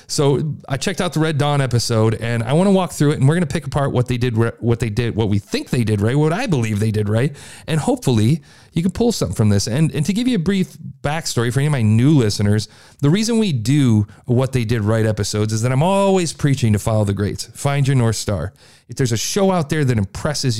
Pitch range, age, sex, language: 115-150 Hz, 40-59, male, English